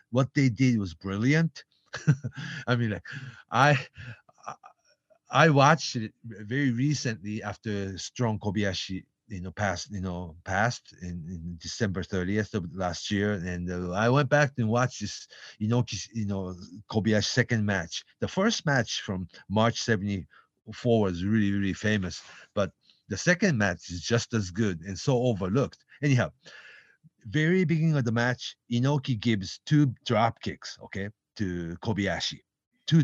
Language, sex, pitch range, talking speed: English, male, 100-135 Hz, 150 wpm